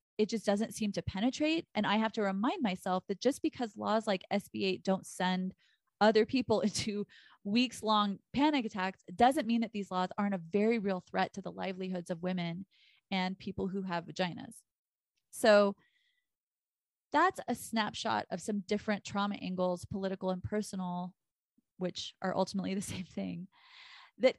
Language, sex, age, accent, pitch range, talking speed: English, female, 20-39, American, 185-225 Hz, 160 wpm